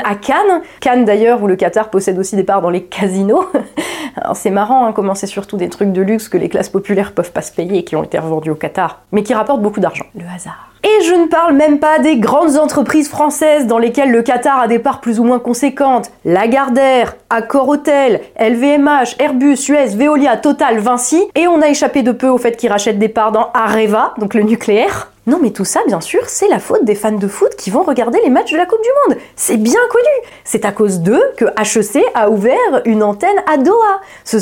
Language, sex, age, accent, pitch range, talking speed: French, female, 20-39, French, 210-295 Hz, 230 wpm